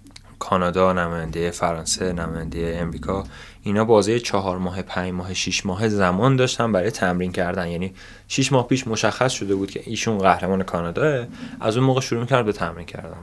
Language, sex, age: Persian, male, 20-39